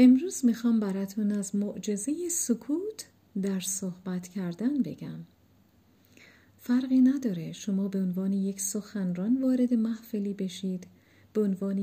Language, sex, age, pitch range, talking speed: Persian, female, 50-69, 190-255 Hz, 110 wpm